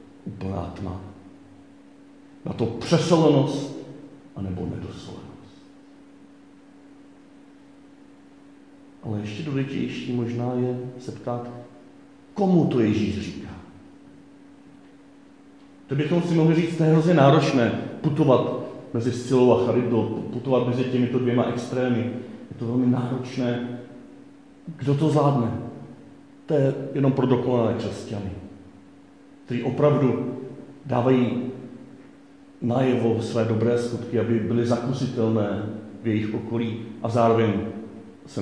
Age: 40-59